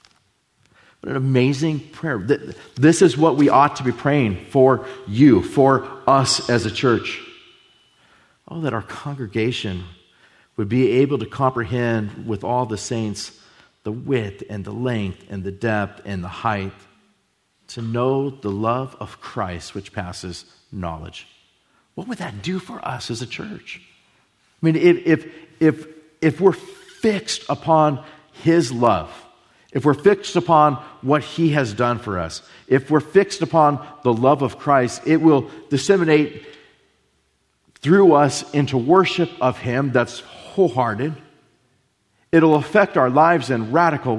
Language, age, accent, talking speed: English, 40-59, American, 145 wpm